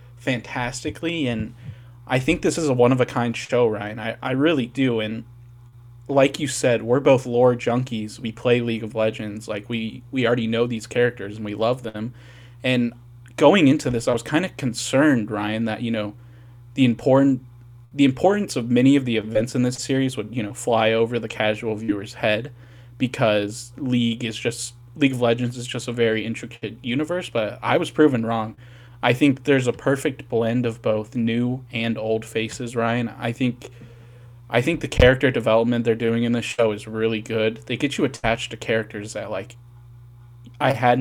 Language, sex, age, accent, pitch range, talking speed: English, male, 20-39, American, 115-125 Hz, 190 wpm